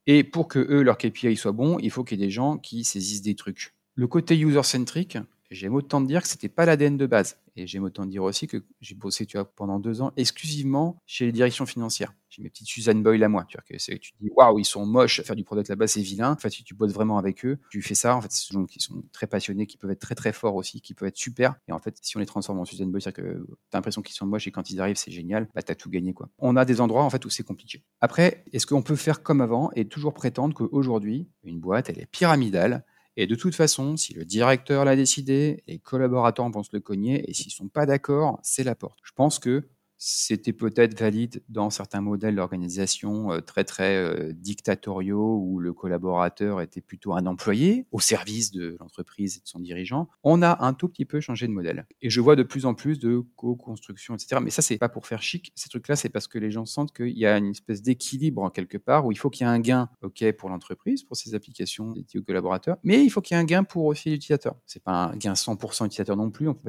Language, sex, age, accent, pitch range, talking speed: French, male, 40-59, French, 100-135 Hz, 265 wpm